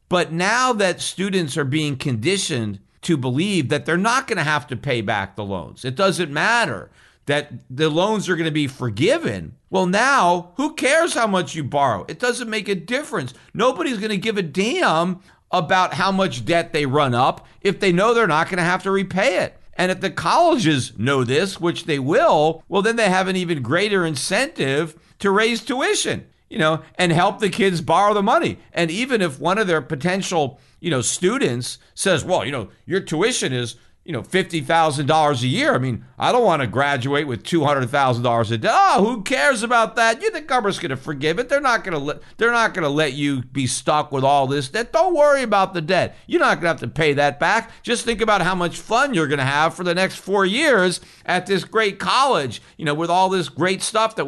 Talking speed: 215 wpm